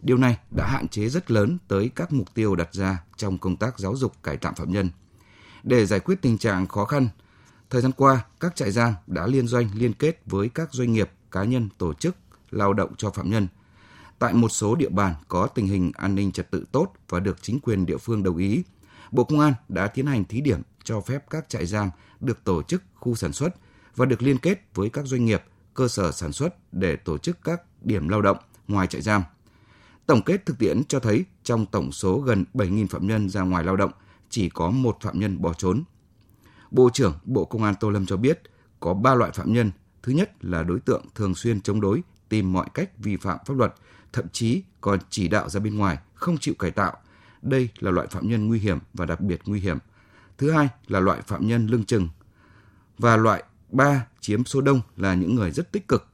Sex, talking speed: male, 230 wpm